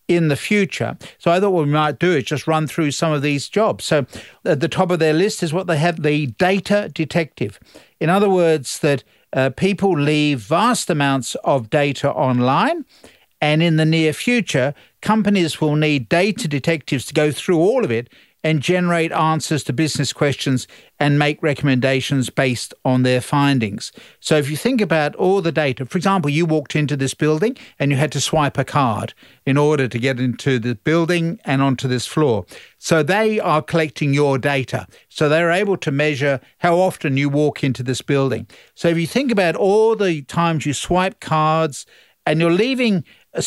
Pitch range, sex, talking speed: 140-180 Hz, male, 190 wpm